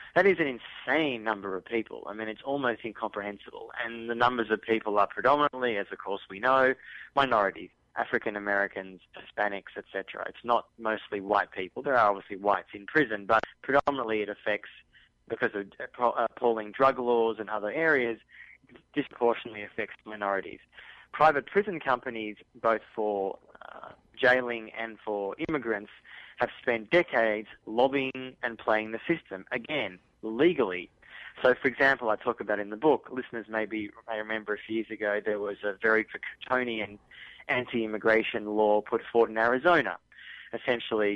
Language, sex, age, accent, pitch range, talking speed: English, male, 20-39, Australian, 105-125 Hz, 155 wpm